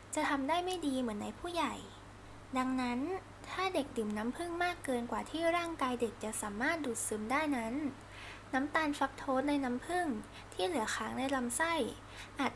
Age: 10-29